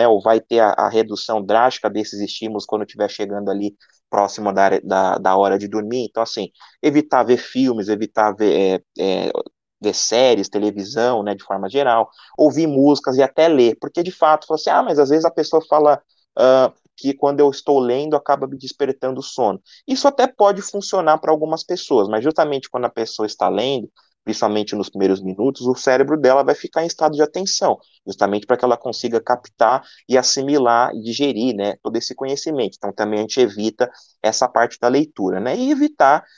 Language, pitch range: Portuguese, 105-145 Hz